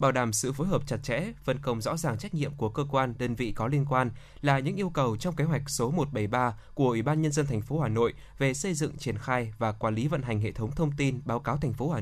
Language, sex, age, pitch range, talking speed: Vietnamese, male, 20-39, 120-150 Hz, 290 wpm